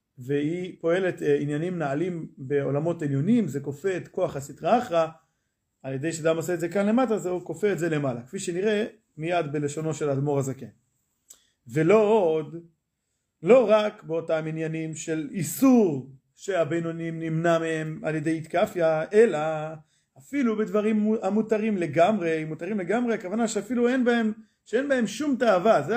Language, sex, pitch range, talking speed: Hebrew, male, 160-220 Hz, 145 wpm